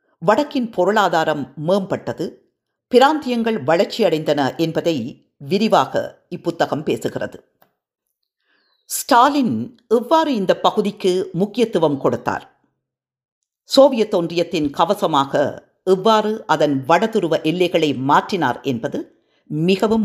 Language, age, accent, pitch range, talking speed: Tamil, 50-69, native, 155-235 Hz, 75 wpm